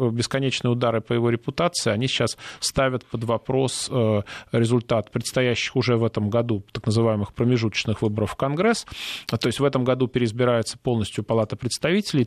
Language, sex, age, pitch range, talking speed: Russian, male, 20-39, 110-130 Hz, 150 wpm